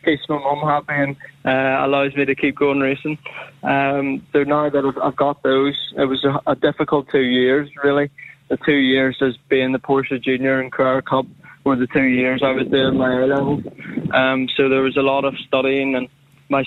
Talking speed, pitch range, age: 210 wpm, 130-140 Hz, 20-39